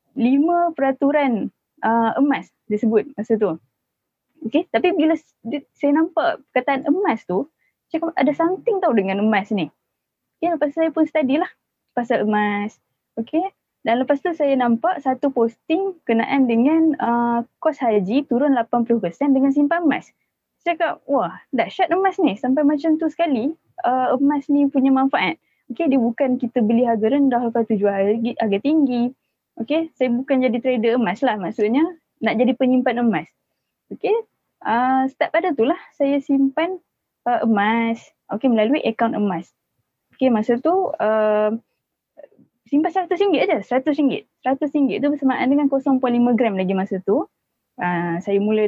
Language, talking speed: Malay, 150 wpm